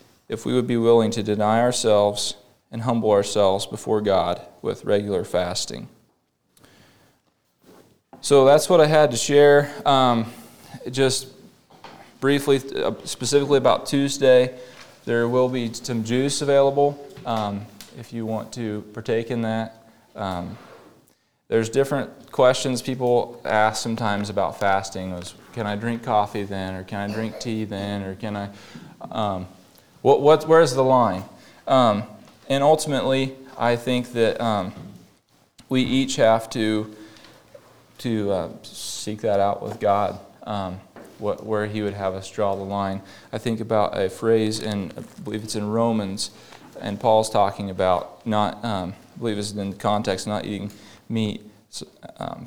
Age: 20-39